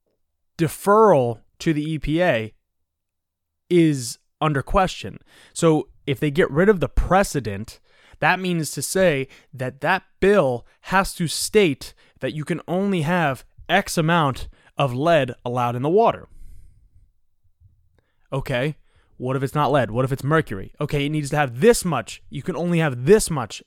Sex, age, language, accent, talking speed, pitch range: male, 20-39, English, American, 155 wpm, 110-160 Hz